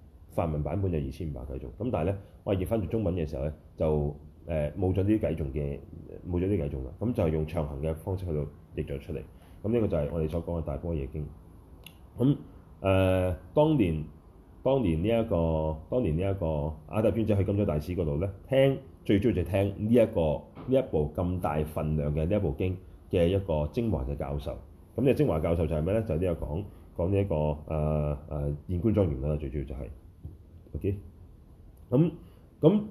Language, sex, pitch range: Chinese, male, 80-110 Hz